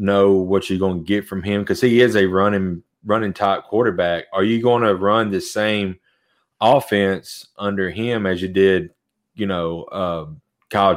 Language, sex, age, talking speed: English, male, 30-49, 180 wpm